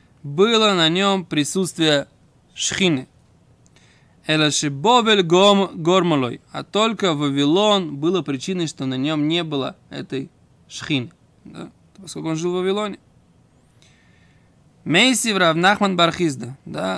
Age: 20-39